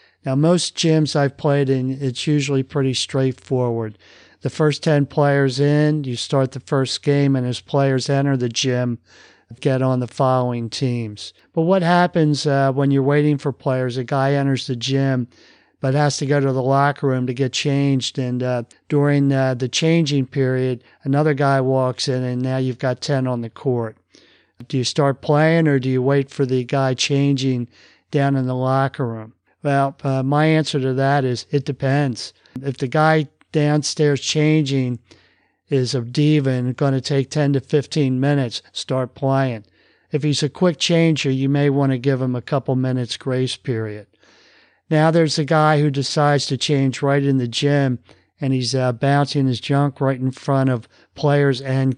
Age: 50-69